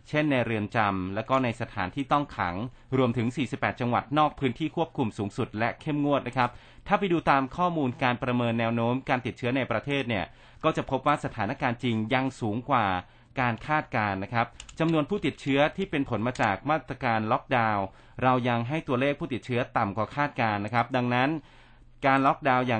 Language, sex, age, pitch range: Thai, male, 30-49, 110-135 Hz